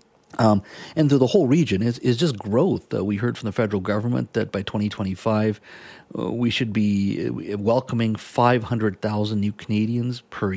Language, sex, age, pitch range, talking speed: English, male, 40-59, 100-125 Hz, 180 wpm